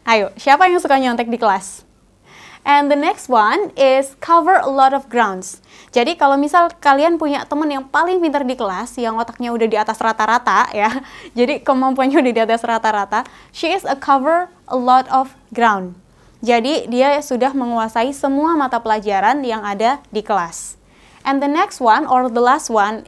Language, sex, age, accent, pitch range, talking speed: Indonesian, female, 20-39, native, 230-295 Hz, 175 wpm